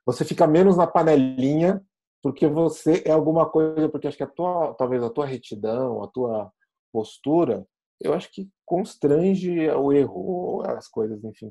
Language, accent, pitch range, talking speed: Portuguese, Brazilian, 125-165 Hz, 165 wpm